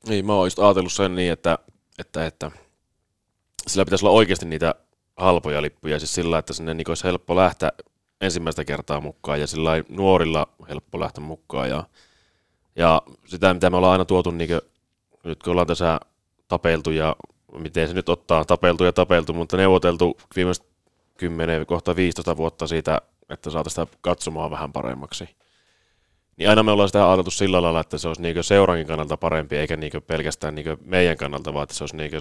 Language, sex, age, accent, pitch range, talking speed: Finnish, male, 30-49, native, 80-90 Hz, 175 wpm